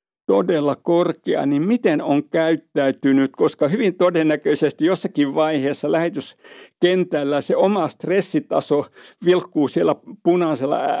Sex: male